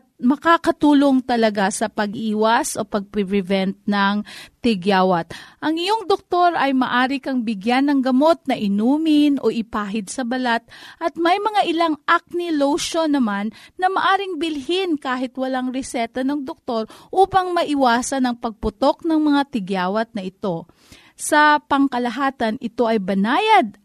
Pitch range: 210-295 Hz